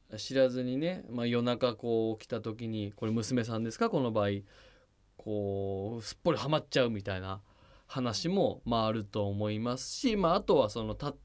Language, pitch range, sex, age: Japanese, 110-175 Hz, male, 20-39